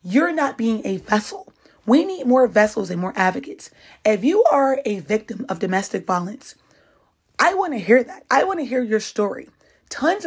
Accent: American